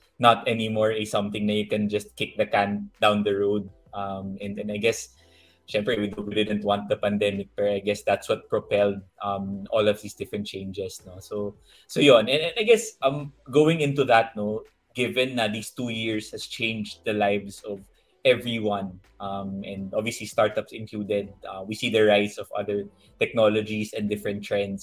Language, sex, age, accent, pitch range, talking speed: Filipino, male, 20-39, native, 100-115 Hz, 190 wpm